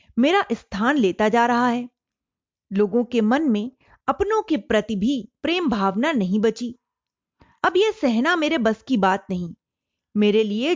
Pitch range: 215-310 Hz